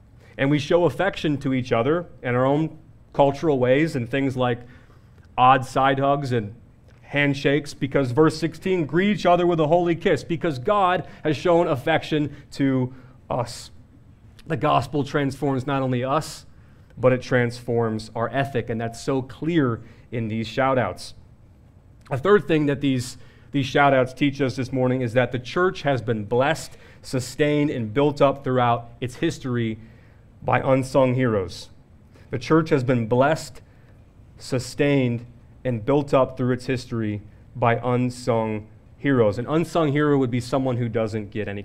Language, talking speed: English, 155 wpm